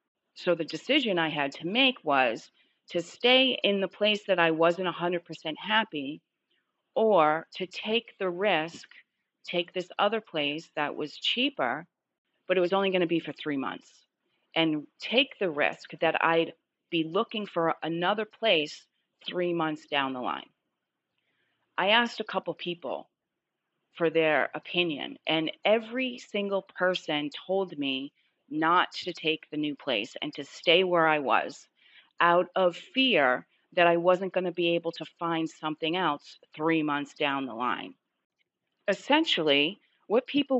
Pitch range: 160-215 Hz